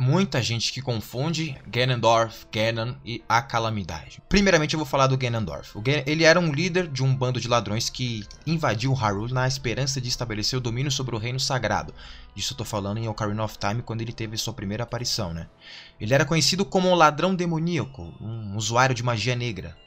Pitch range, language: 110-140 Hz, English